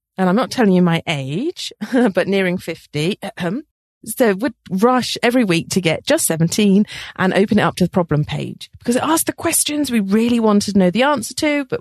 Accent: British